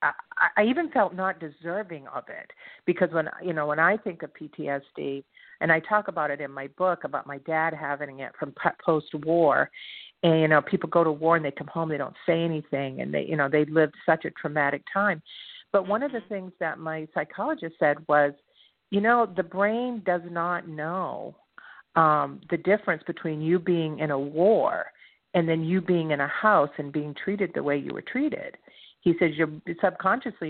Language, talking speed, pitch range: English, 200 wpm, 155-195 Hz